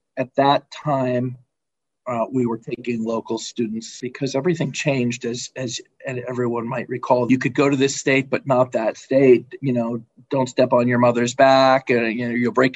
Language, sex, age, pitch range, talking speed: English, male, 40-59, 120-135 Hz, 195 wpm